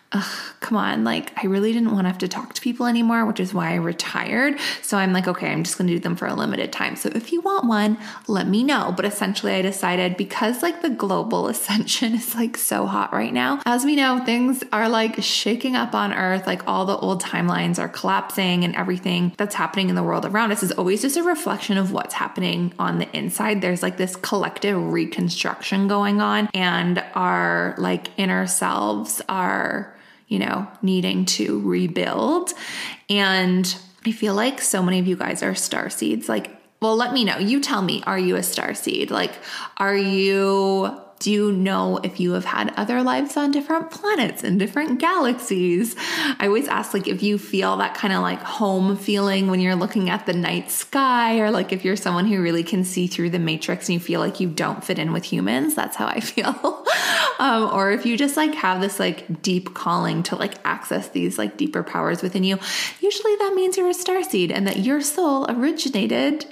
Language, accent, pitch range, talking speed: English, American, 180-245 Hz, 210 wpm